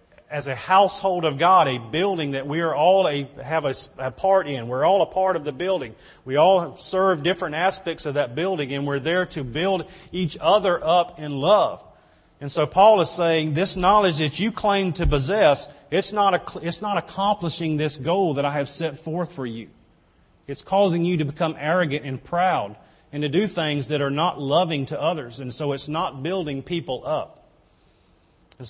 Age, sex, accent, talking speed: 40-59, male, American, 200 wpm